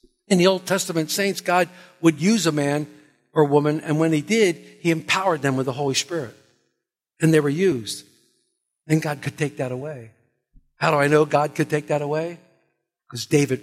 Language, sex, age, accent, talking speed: English, male, 50-69, American, 200 wpm